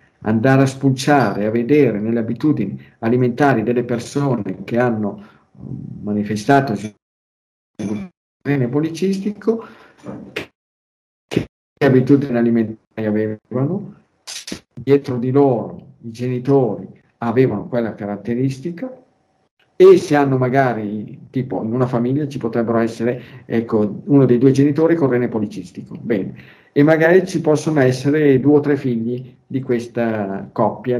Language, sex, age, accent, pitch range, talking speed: Italian, male, 50-69, native, 115-145 Hz, 120 wpm